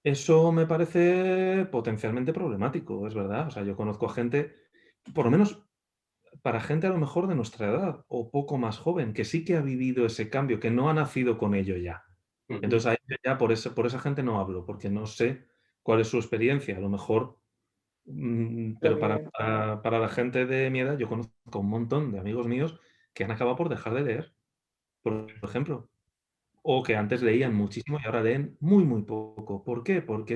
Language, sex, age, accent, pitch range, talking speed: Spanish, male, 30-49, Spanish, 110-135 Hz, 195 wpm